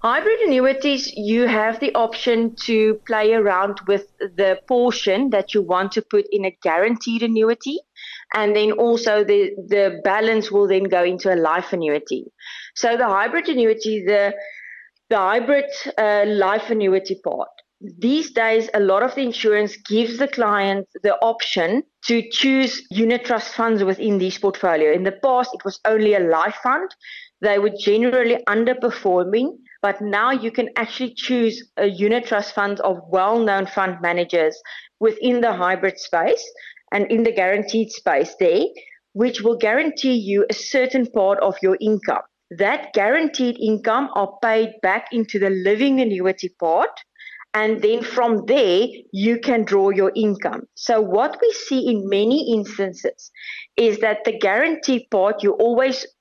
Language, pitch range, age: English, 200-245 Hz, 30-49